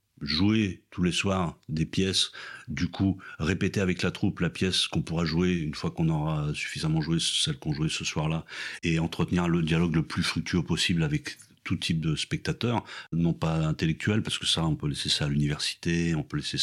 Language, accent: French, French